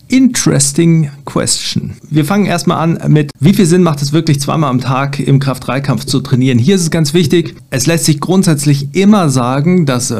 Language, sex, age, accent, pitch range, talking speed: German, male, 40-59, German, 125-160 Hz, 190 wpm